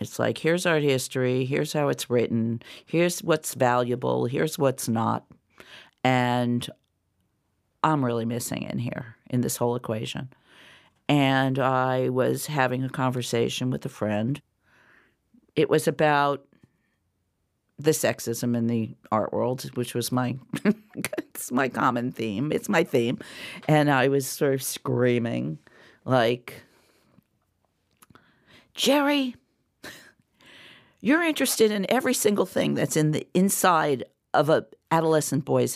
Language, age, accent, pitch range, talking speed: English, 50-69, American, 120-185 Hz, 125 wpm